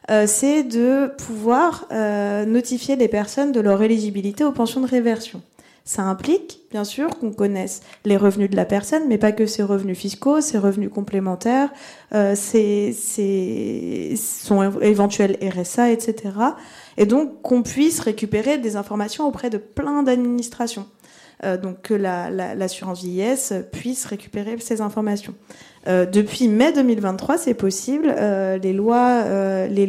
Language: French